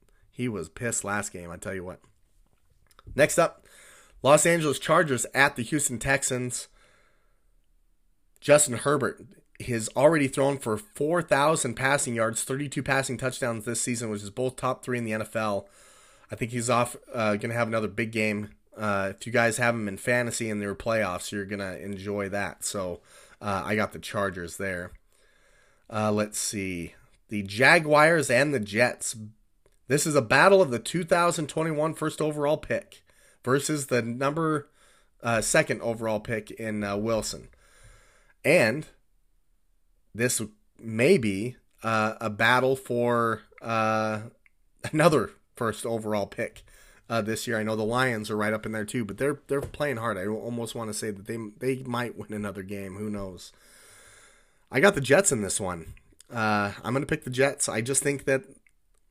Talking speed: 170 wpm